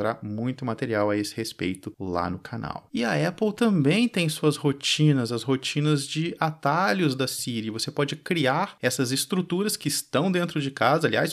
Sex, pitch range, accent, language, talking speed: male, 125-155 Hz, Brazilian, Portuguese, 170 wpm